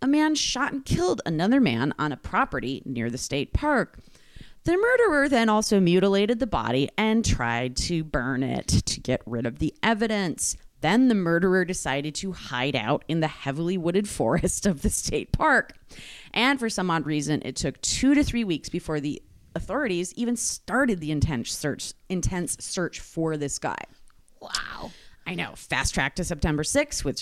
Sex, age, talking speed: female, 30-49, 180 wpm